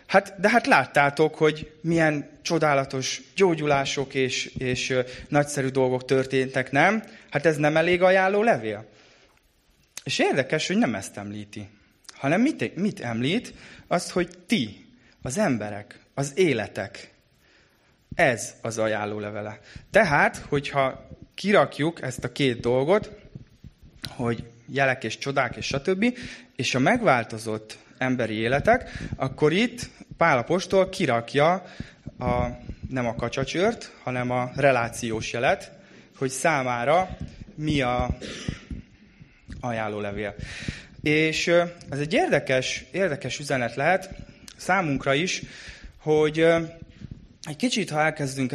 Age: 20-39